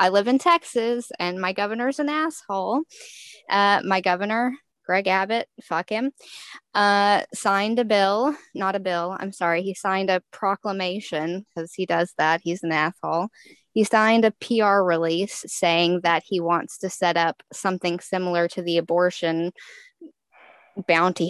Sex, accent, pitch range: female, American, 180-225 Hz